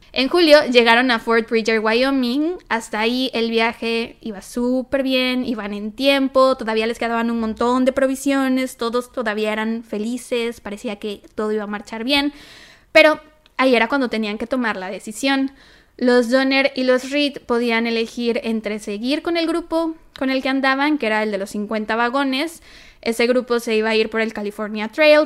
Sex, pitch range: female, 220-270 Hz